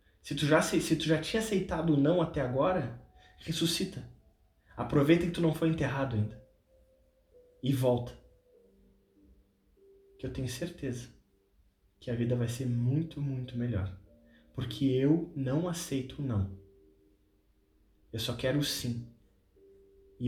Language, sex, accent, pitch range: Portuguese, male, Brazilian, 105-145 Hz